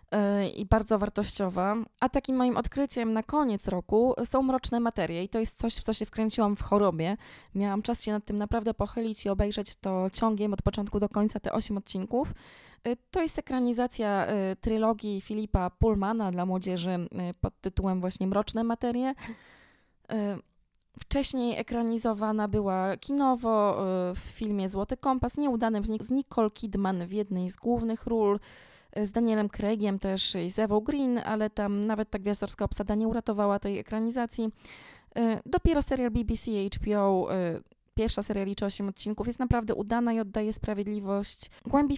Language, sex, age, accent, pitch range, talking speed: Polish, female, 20-39, native, 200-235 Hz, 150 wpm